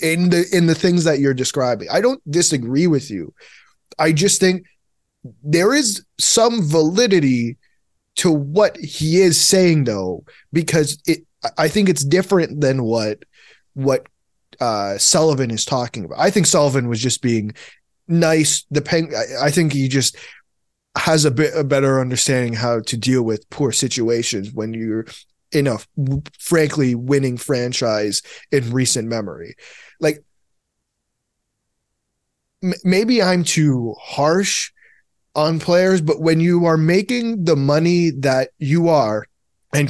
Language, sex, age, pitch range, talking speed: English, male, 20-39, 130-175 Hz, 140 wpm